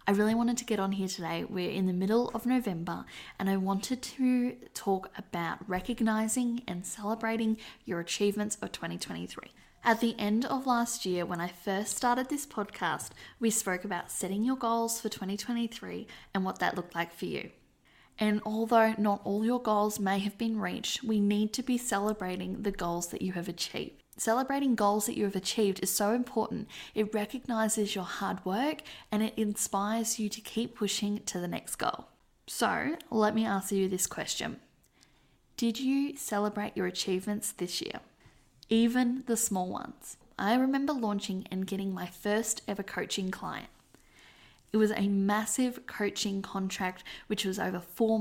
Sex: female